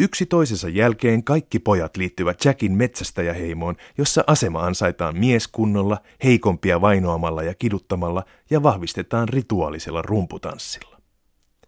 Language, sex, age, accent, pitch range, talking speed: Finnish, male, 30-49, native, 95-135 Hz, 105 wpm